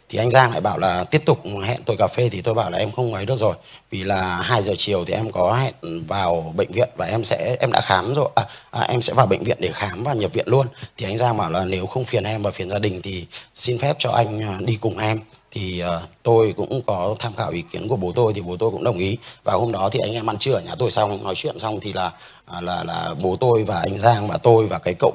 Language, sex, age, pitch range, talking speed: Vietnamese, male, 30-49, 105-130 Hz, 290 wpm